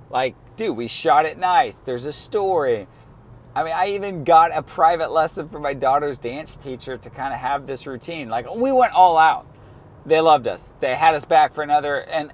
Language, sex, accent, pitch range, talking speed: English, male, American, 125-160 Hz, 210 wpm